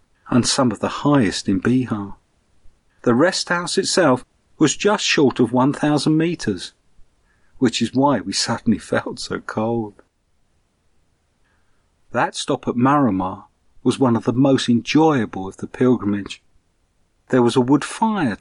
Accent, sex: British, male